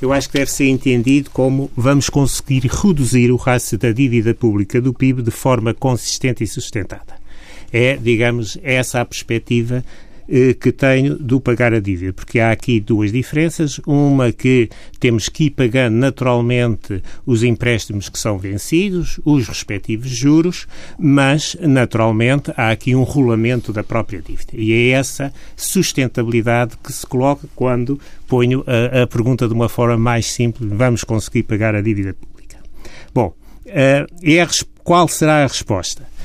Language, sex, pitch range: Portuguese, male, 115-145 Hz